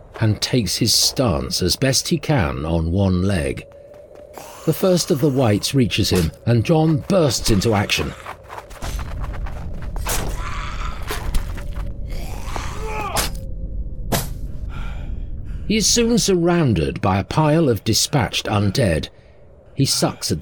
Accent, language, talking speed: British, English, 105 wpm